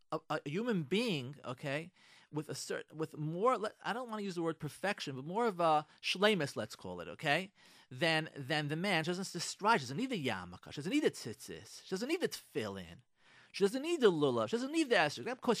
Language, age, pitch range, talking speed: English, 40-59, 160-245 Hz, 235 wpm